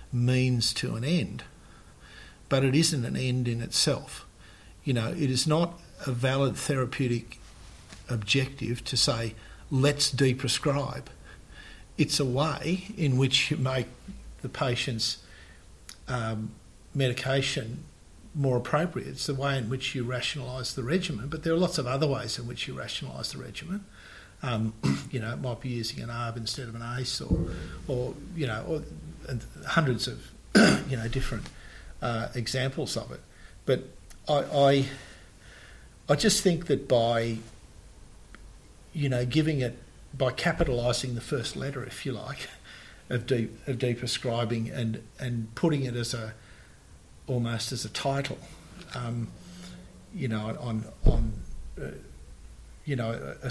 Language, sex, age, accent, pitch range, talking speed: English, male, 50-69, Australian, 115-140 Hz, 145 wpm